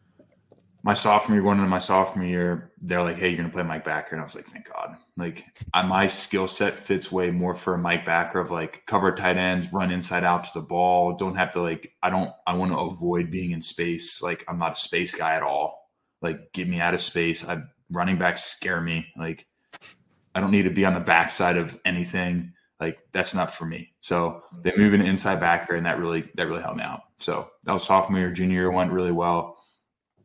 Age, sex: 20-39, male